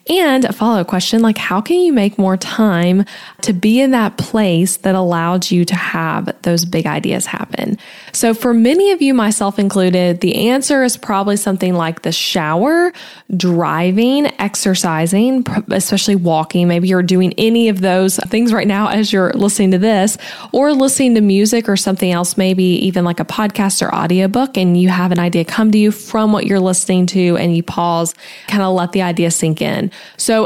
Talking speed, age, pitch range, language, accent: 195 wpm, 10-29, 180-225 Hz, English, American